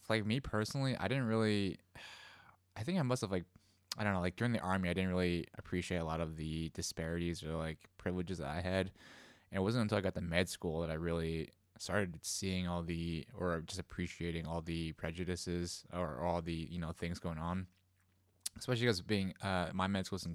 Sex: male